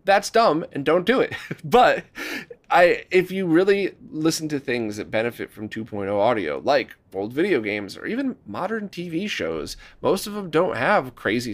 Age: 30-49